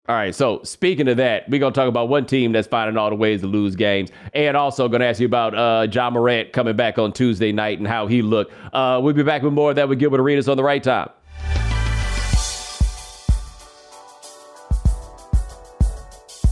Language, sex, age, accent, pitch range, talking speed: English, male, 40-59, American, 115-160 Hz, 205 wpm